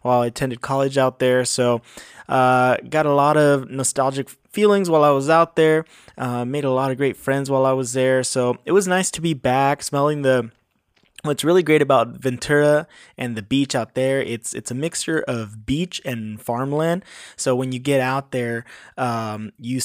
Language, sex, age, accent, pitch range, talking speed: English, male, 20-39, American, 120-145 Hz, 195 wpm